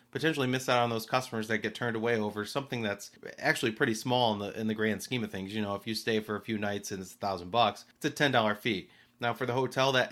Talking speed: 280 wpm